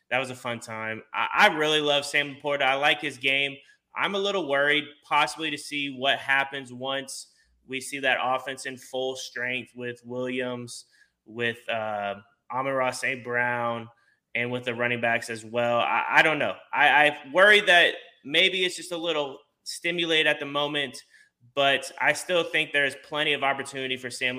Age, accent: 20-39, American